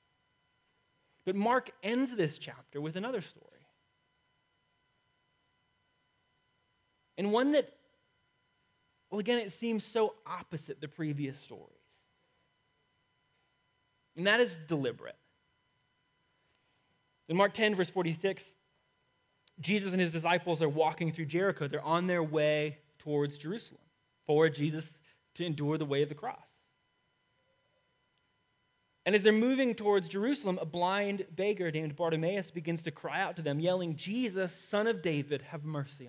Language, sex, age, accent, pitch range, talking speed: English, male, 20-39, American, 150-200 Hz, 125 wpm